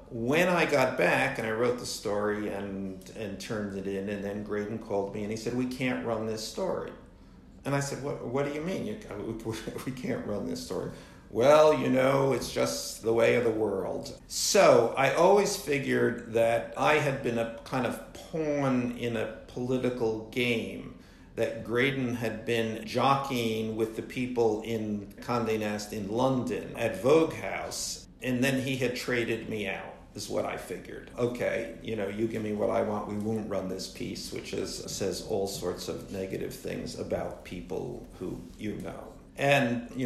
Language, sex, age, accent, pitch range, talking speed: English, male, 50-69, American, 105-125 Hz, 185 wpm